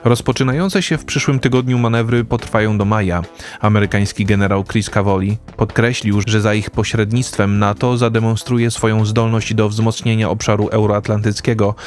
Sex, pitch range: male, 105-120 Hz